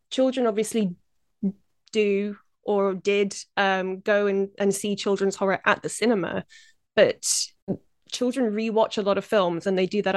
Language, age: English, 20-39